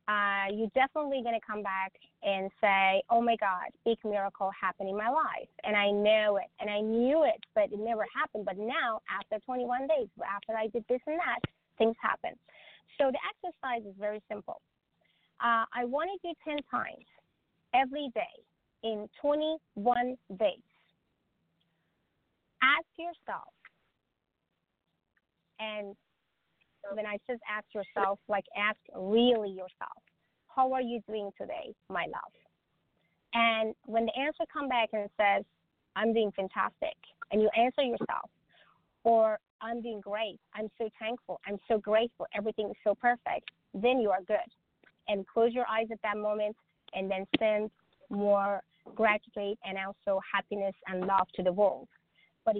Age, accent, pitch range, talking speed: 30-49, American, 205-250 Hz, 155 wpm